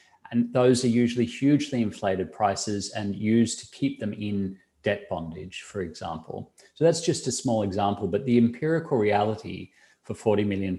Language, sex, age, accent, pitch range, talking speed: English, male, 40-59, Australian, 95-120 Hz, 165 wpm